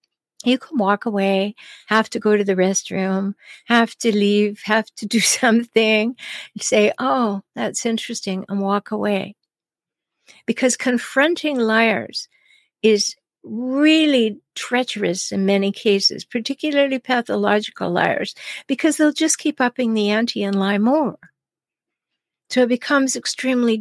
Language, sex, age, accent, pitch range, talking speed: English, female, 60-79, American, 205-255 Hz, 125 wpm